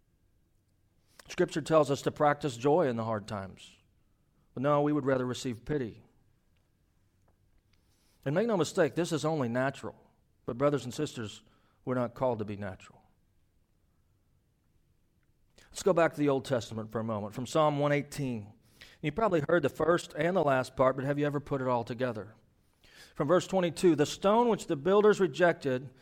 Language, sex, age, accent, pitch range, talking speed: English, male, 40-59, American, 105-155 Hz, 170 wpm